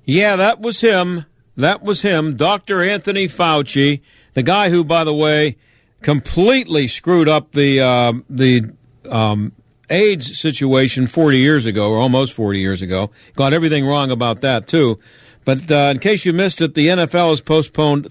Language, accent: English, American